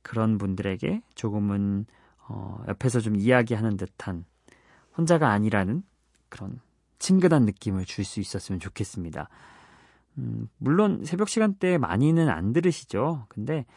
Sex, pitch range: male, 100-140 Hz